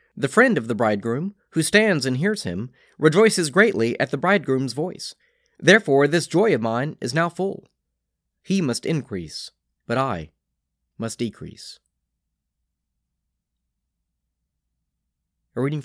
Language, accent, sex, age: English, American, male, 30-49